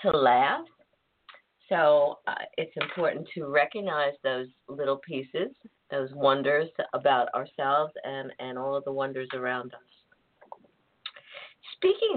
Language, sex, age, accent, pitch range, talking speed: English, female, 50-69, American, 140-195 Hz, 120 wpm